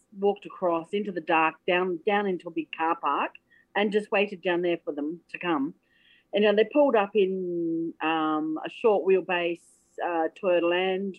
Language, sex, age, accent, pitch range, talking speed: English, female, 40-59, Australian, 170-240 Hz, 180 wpm